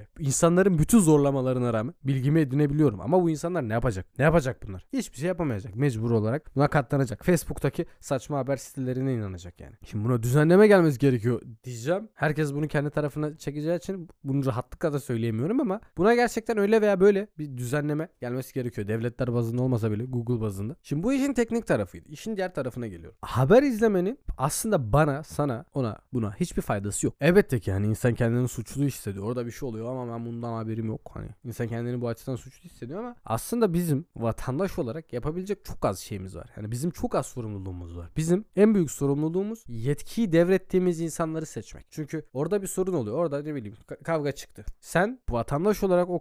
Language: Turkish